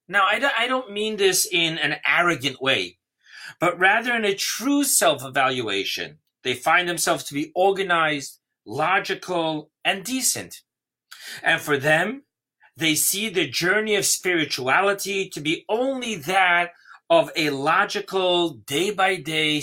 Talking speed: 125 wpm